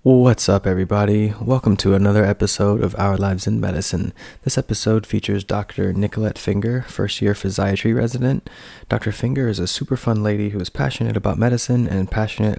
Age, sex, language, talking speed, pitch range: 20-39, male, English, 170 wpm, 100-110 Hz